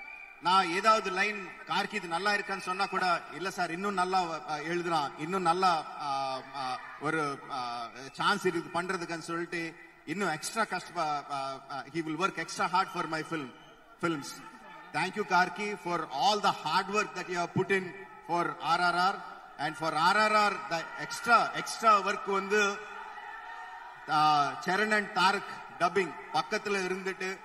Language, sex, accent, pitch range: Tamil, male, native, 165-195 Hz